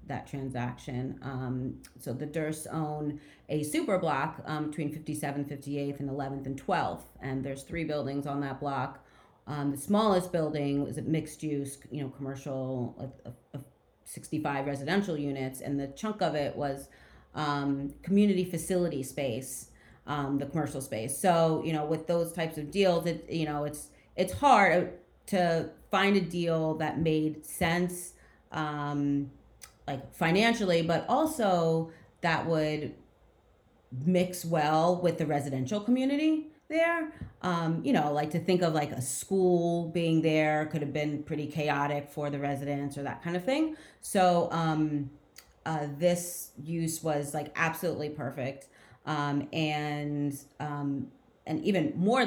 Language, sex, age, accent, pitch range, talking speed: English, female, 30-49, American, 140-170 Hz, 150 wpm